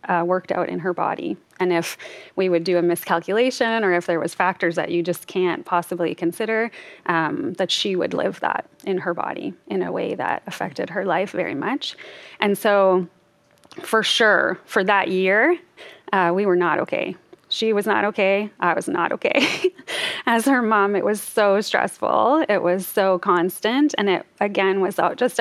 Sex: female